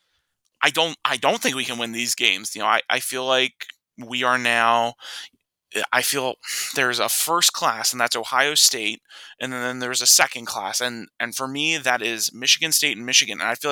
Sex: male